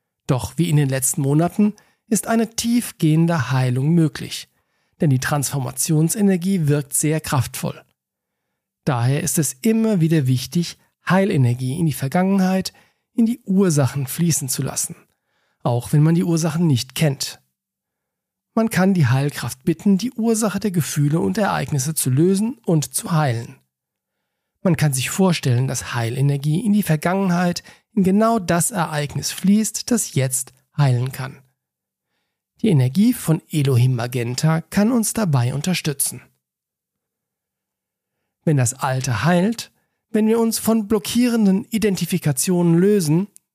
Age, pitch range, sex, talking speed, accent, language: 40-59, 135-190 Hz, male, 130 wpm, German, German